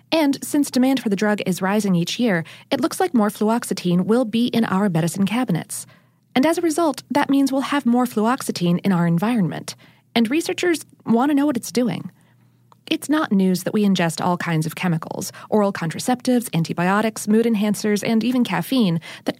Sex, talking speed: female, 185 wpm